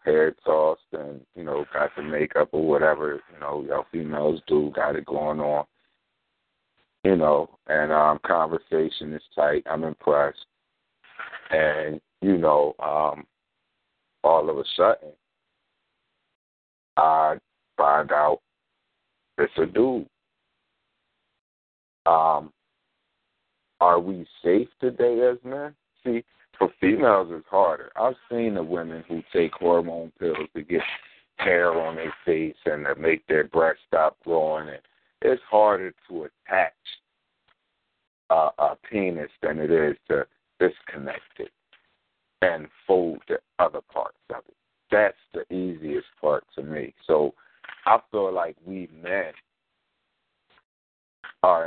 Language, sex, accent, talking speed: English, male, American, 125 wpm